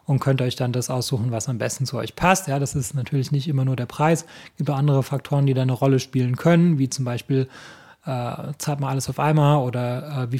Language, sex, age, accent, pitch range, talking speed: German, male, 30-49, German, 135-165 Hz, 250 wpm